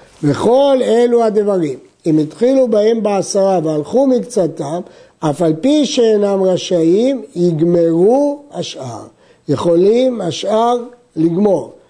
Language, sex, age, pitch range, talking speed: Hebrew, male, 60-79, 170-230 Hz, 95 wpm